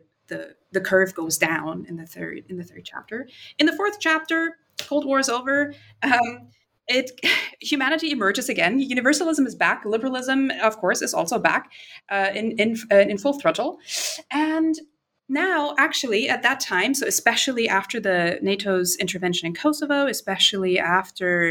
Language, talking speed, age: English, 160 wpm, 30-49